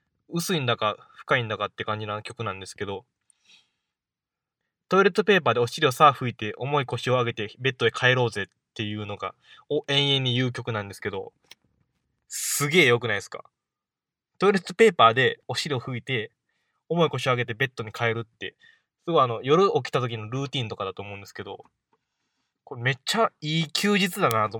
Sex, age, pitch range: male, 20-39, 115-170 Hz